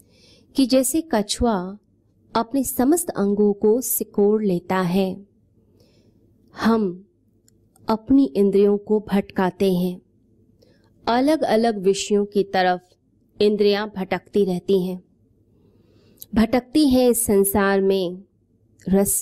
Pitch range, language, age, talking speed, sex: 180-215 Hz, Hindi, 20-39, 95 wpm, female